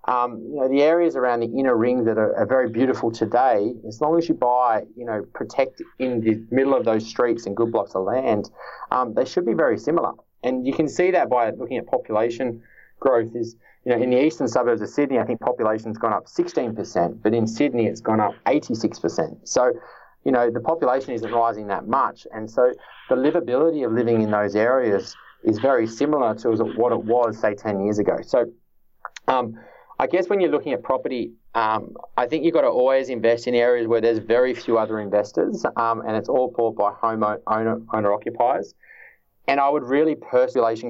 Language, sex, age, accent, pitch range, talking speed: English, male, 30-49, Australian, 110-130 Hz, 210 wpm